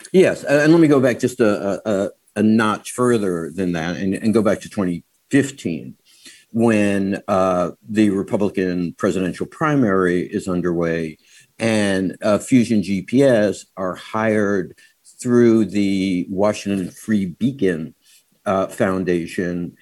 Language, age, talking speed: English, 60-79, 120 wpm